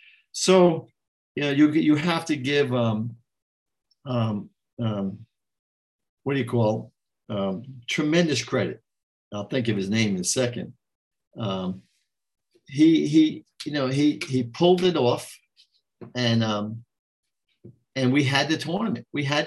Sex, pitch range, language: male, 115-150 Hz, English